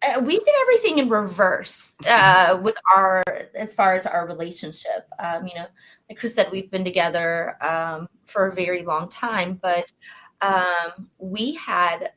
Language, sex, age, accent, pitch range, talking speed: English, female, 20-39, American, 175-225 Hz, 160 wpm